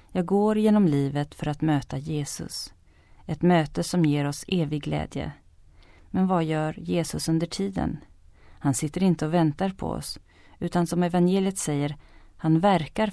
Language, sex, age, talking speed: Swedish, female, 30-49, 155 wpm